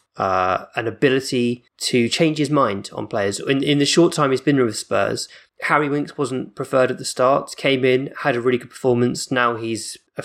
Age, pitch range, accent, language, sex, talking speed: 20-39, 115-140 Hz, British, English, male, 205 wpm